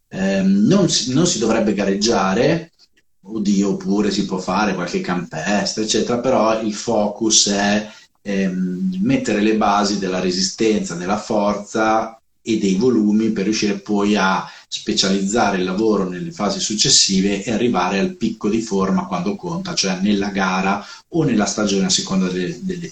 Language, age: Italian, 30-49